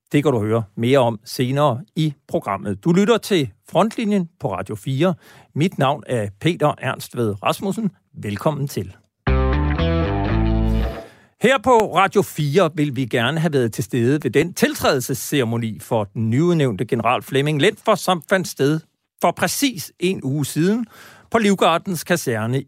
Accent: native